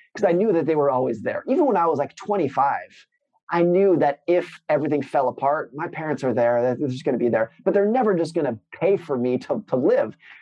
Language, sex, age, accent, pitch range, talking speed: English, male, 30-49, American, 130-170 Hz, 250 wpm